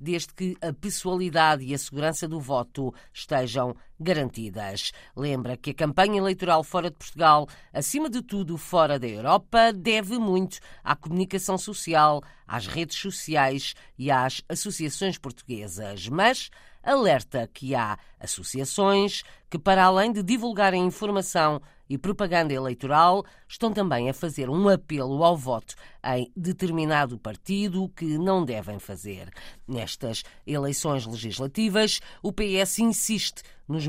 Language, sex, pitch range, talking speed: Portuguese, female, 130-185 Hz, 130 wpm